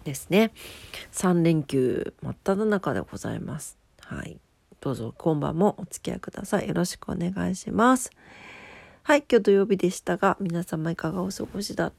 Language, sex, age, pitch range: Japanese, female, 40-59, 160-195 Hz